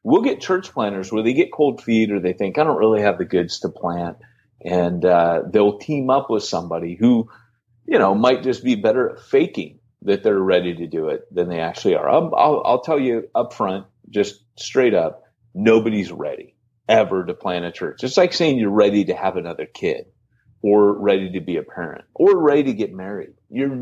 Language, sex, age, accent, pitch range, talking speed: English, male, 30-49, American, 95-120 Hz, 215 wpm